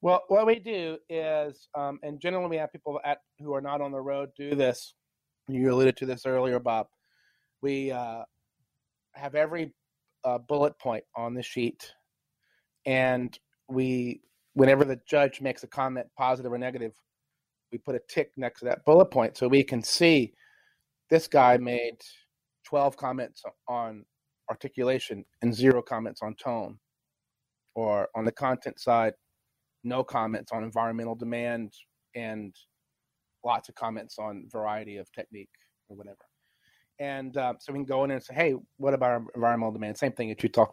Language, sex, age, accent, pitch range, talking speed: English, male, 30-49, American, 120-145 Hz, 165 wpm